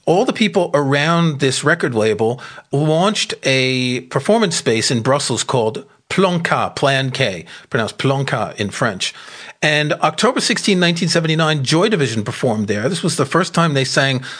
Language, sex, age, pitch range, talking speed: English, male, 40-59, 130-165 Hz, 150 wpm